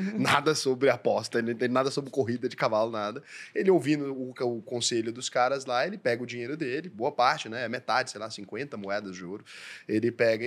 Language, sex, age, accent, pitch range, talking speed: Portuguese, male, 10-29, Brazilian, 130-200 Hz, 200 wpm